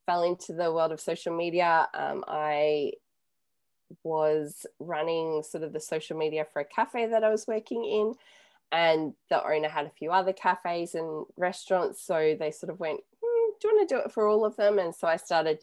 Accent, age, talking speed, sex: Australian, 20-39, 205 wpm, female